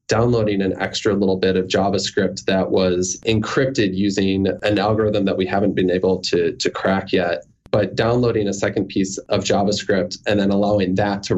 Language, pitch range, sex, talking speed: English, 95-115 Hz, male, 180 wpm